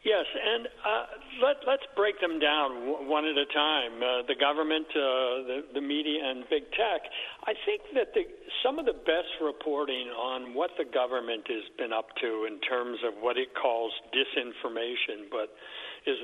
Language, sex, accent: English, male, American